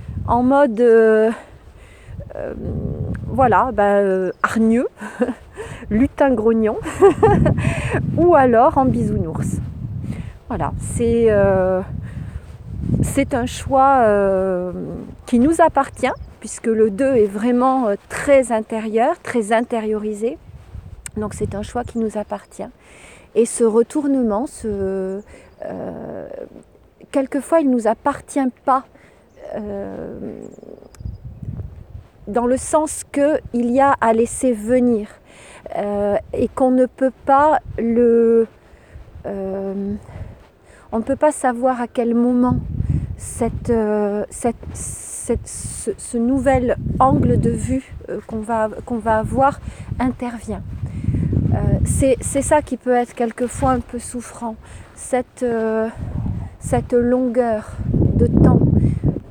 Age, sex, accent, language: 30-49, female, French, French